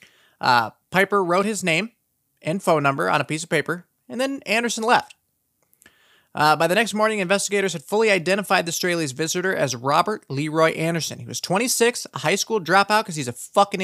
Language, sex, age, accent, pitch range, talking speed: English, male, 30-49, American, 145-205 Hz, 190 wpm